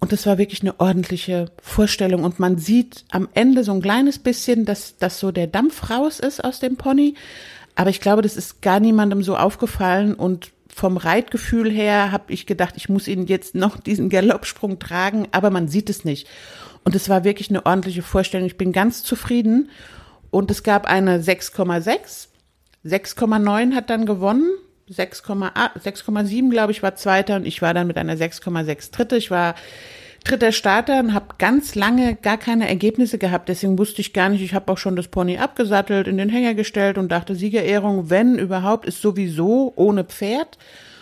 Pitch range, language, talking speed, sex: 185-230 Hz, German, 185 wpm, female